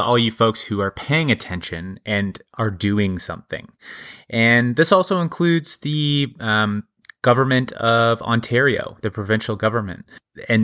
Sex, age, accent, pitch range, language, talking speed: male, 20-39, American, 100-120 Hz, English, 135 wpm